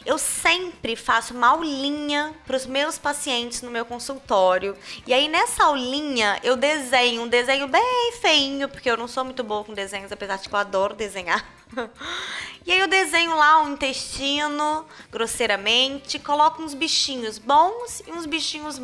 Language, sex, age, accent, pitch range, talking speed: Portuguese, female, 20-39, Brazilian, 240-345 Hz, 160 wpm